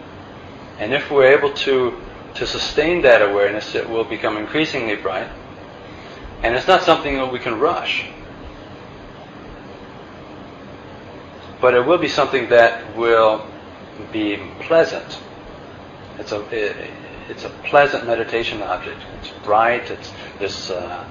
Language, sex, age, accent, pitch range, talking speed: English, male, 40-59, American, 100-135 Hz, 120 wpm